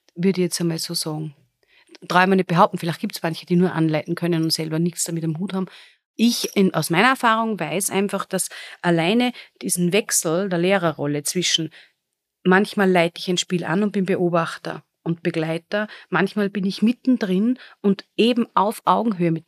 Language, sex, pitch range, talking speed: German, female, 160-190 Hz, 185 wpm